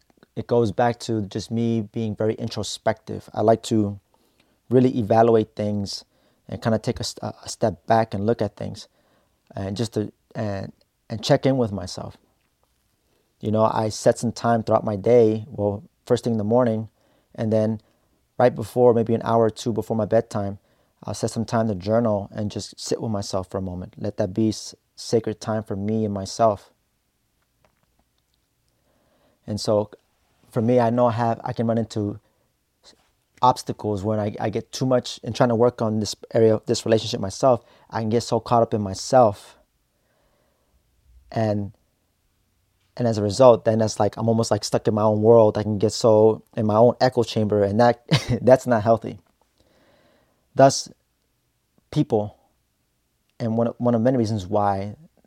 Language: English